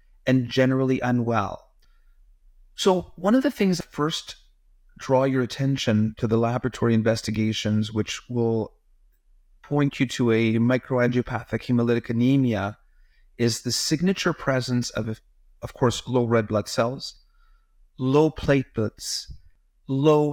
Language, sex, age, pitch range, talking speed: English, male, 30-49, 115-150 Hz, 120 wpm